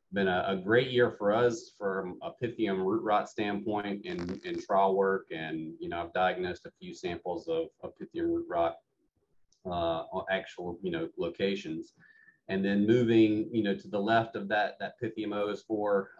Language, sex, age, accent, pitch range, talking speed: English, male, 30-49, American, 95-130 Hz, 185 wpm